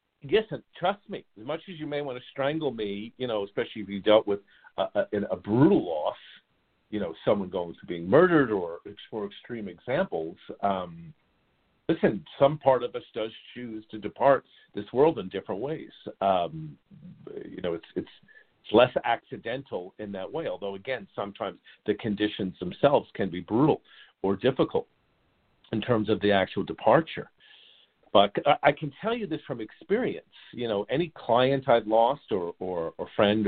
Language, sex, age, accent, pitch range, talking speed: English, male, 50-69, American, 100-150 Hz, 170 wpm